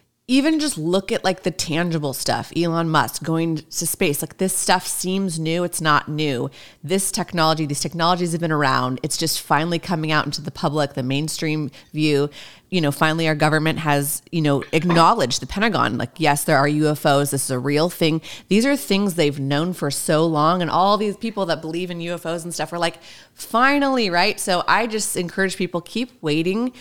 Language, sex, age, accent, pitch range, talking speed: English, female, 30-49, American, 145-180 Hz, 200 wpm